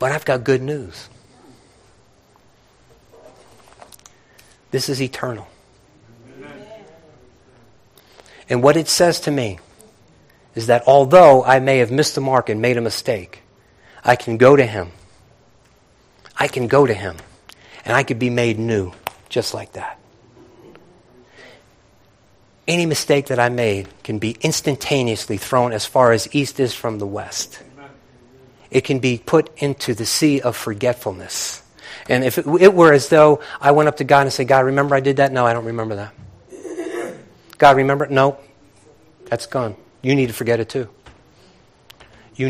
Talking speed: 155 wpm